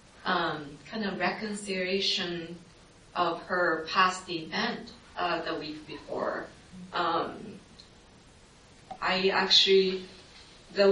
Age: 30-49